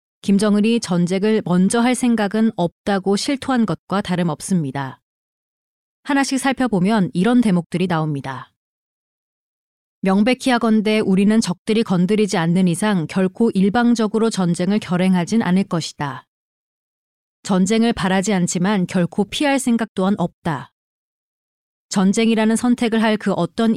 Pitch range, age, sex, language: 180-225 Hz, 30-49, female, Korean